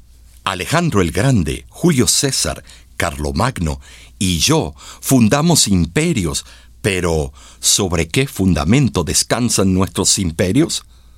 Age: 60-79